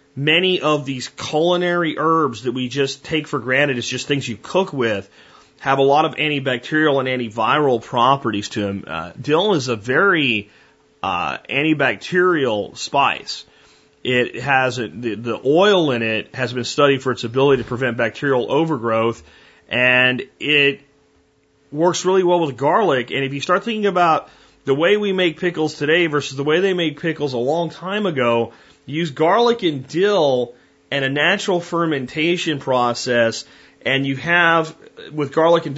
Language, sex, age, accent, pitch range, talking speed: English, male, 30-49, American, 125-160 Hz, 160 wpm